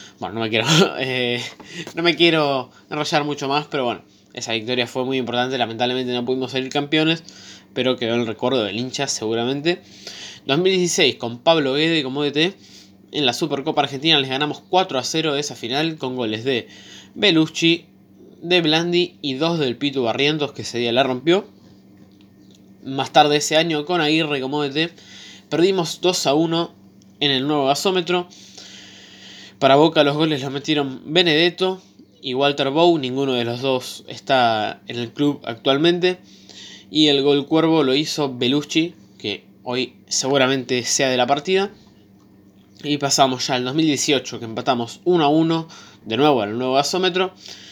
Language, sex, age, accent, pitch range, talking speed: Spanish, male, 20-39, Argentinian, 120-160 Hz, 160 wpm